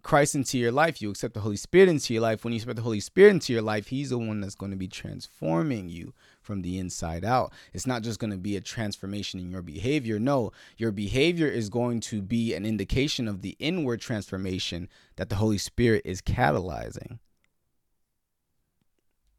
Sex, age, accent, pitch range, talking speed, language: male, 30-49, American, 95-150 Hz, 200 wpm, English